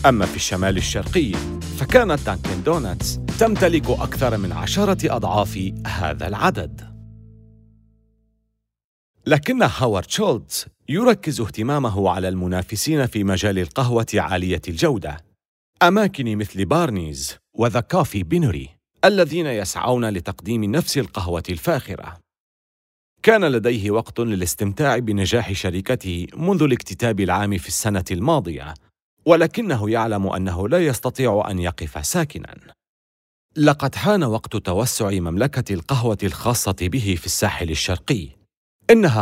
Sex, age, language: male, 40-59, Arabic